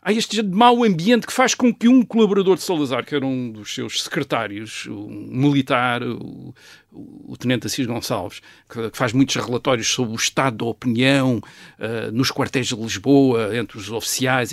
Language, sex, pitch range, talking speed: Portuguese, male, 135-220 Hz, 180 wpm